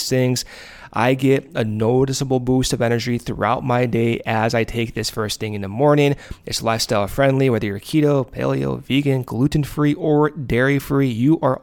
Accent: American